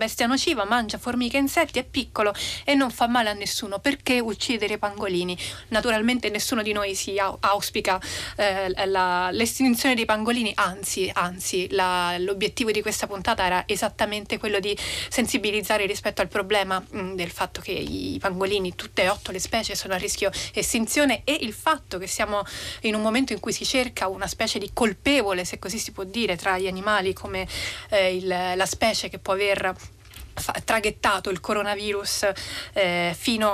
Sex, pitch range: female, 195-230 Hz